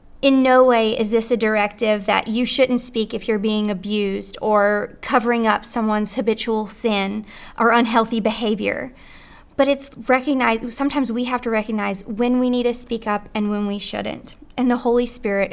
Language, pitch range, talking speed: English, 215-250 Hz, 180 wpm